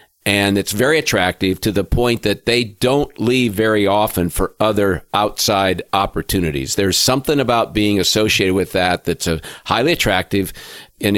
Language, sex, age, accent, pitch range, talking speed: English, male, 50-69, American, 95-115 Hz, 155 wpm